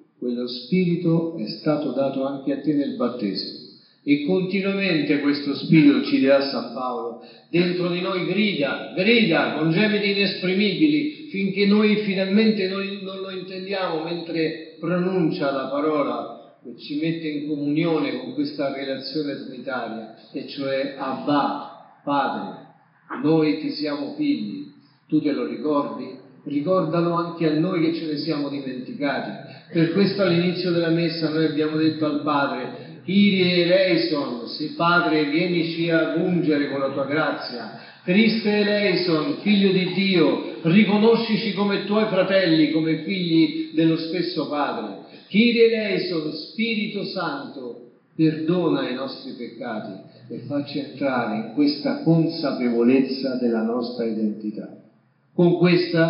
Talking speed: 130 wpm